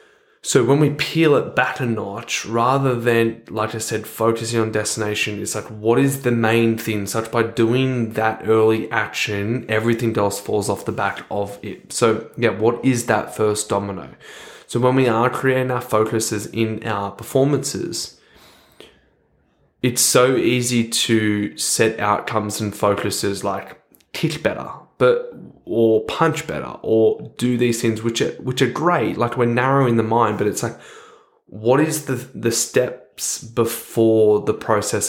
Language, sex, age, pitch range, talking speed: English, male, 10-29, 110-125 Hz, 160 wpm